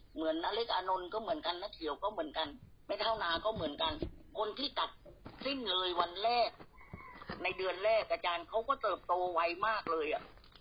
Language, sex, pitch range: Thai, female, 180-275 Hz